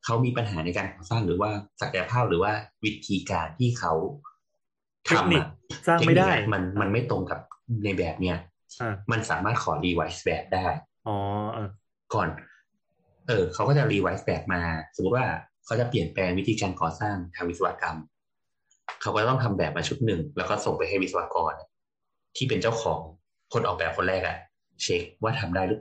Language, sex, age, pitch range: Thai, male, 30-49, 85-115 Hz